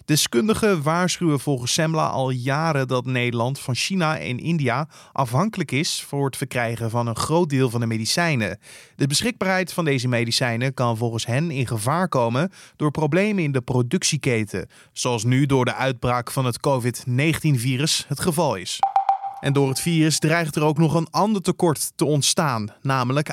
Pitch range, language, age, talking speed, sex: 125-165 Hz, Dutch, 20-39, 170 wpm, male